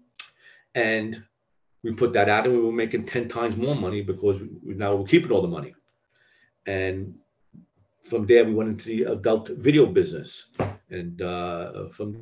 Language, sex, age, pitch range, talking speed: English, male, 50-69, 95-115 Hz, 165 wpm